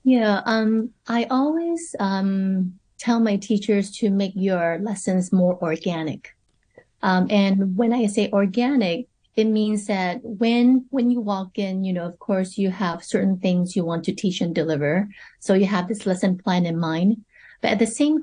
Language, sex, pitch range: English, female, 190-235 Hz